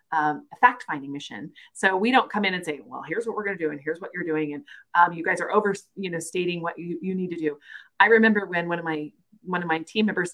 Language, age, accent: English, 30-49, American